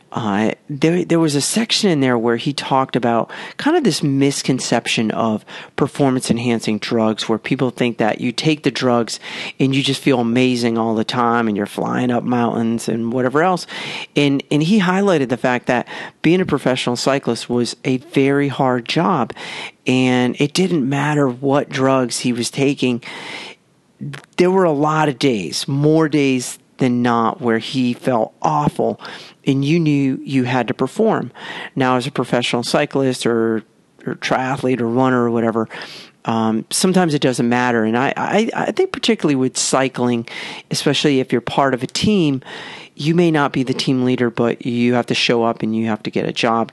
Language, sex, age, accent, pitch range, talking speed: English, male, 40-59, American, 120-150 Hz, 180 wpm